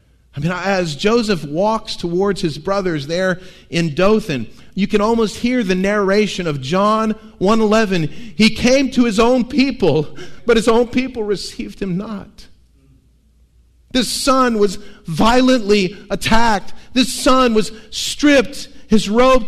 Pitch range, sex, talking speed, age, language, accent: 130-210 Hz, male, 140 wpm, 50-69, English, American